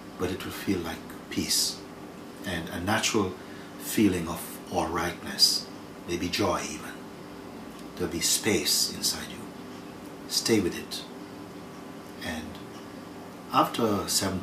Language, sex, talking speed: English, male, 115 wpm